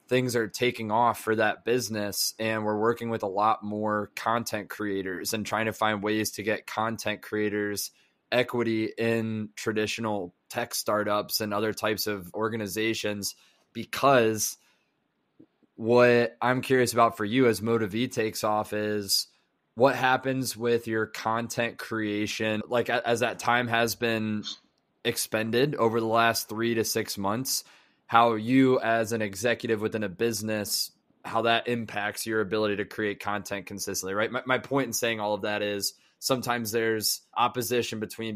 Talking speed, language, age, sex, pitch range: 155 wpm, English, 20-39, male, 105-115 Hz